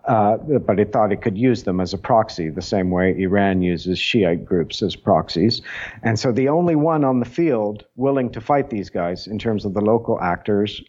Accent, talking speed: American, 215 wpm